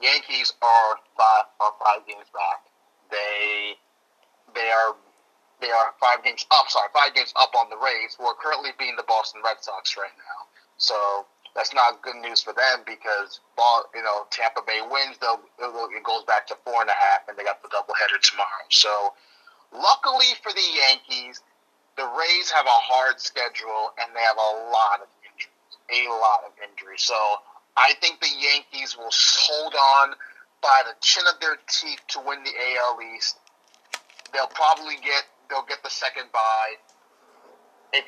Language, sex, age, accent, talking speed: English, male, 30-49, American, 175 wpm